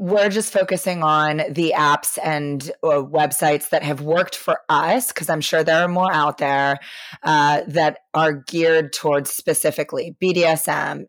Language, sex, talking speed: English, female, 150 wpm